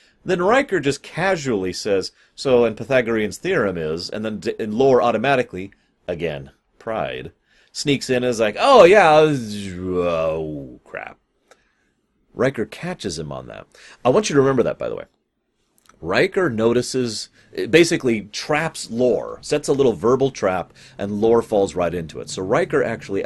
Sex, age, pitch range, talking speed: male, 30-49, 85-135 Hz, 155 wpm